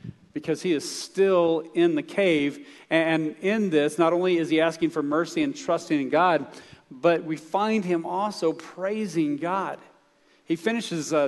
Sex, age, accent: male, 40-59, American